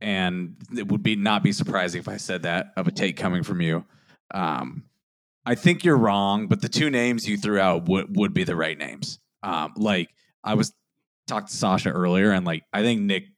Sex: male